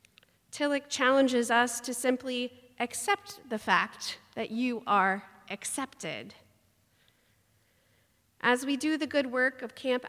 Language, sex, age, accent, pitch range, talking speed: English, female, 40-59, American, 205-265 Hz, 120 wpm